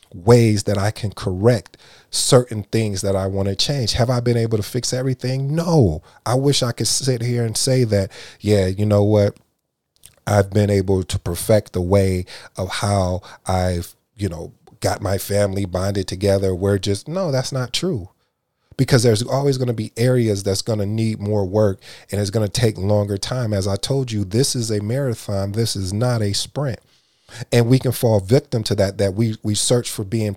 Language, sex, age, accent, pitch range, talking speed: English, male, 30-49, American, 100-120 Hz, 200 wpm